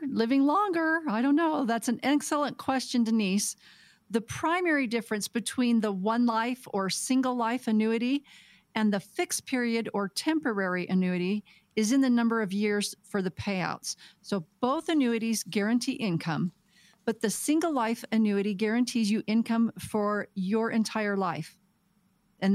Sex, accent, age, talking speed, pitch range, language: female, American, 40-59, 145 wpm, 195-245 Hz, English